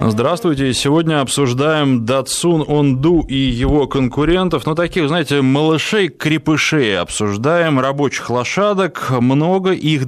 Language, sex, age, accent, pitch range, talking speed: Russian, male, 20-39, native, 120-155 Hz, 105 wpm